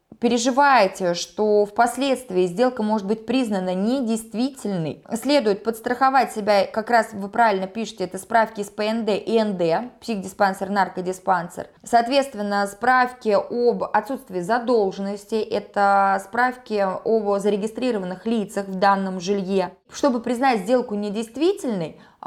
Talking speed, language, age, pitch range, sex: 110 wpm, Russian, 20-39, 200-250 Hz, female